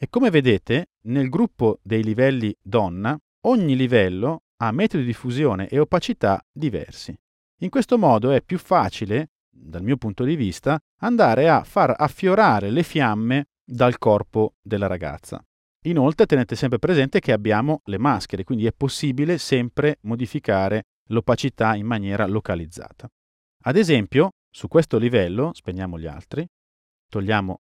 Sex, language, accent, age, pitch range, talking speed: male, Italian, native, 40-59, 100-150 Hz, 140 wpm